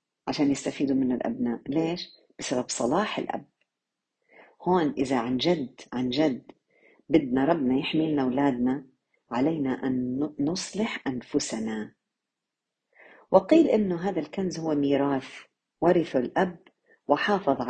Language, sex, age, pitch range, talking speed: Arabic, female, 50-69, 140-210 Hz, 110 wpm